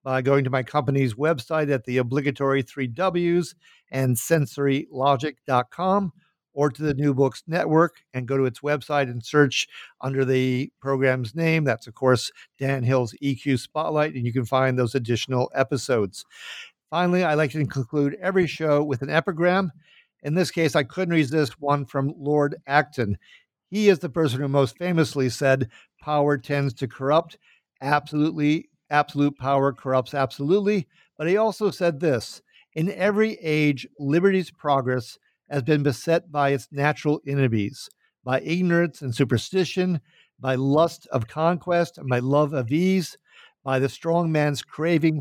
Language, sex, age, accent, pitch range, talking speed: English, male, 50-69, American, 130-160 Hz, 155 wpm